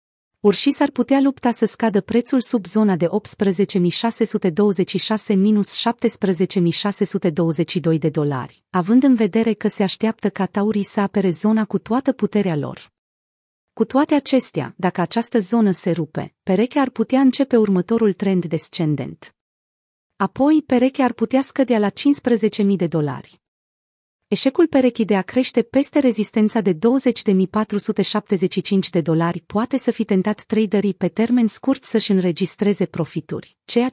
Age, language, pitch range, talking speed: 30-49, Romanian, 180-235 Hz, 135 wpm